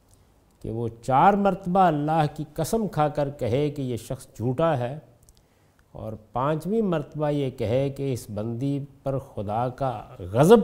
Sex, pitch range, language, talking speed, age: male, 105-140 Hz, Urdu, 150 wpm, 50-69